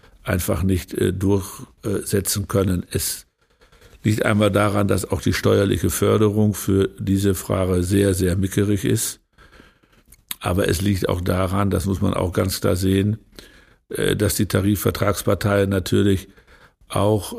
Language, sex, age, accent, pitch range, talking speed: German, male, 60-79, German, 95-105 Hz, 140 wpm